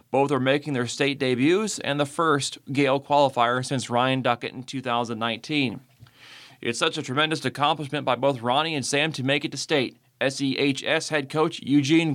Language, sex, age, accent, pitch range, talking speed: English, male, 30-49, American, 125-150 Hz, 175 wpm